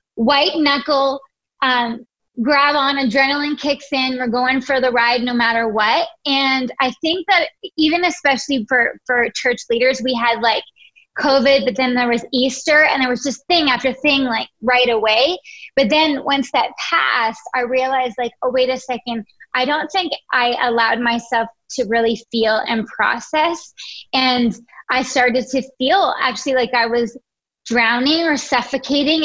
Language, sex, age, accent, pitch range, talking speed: English, female, 20-39, American, 235-280 Hz, 165 wpm